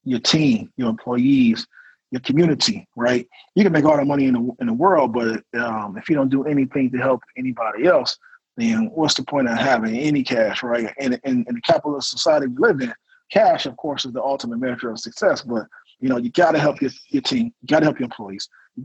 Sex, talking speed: male, 235 wpm